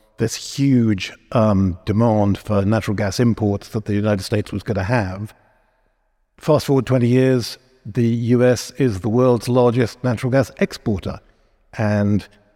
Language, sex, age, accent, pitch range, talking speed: English, male, 50-69, British, 105-130 Hz, 145 wpm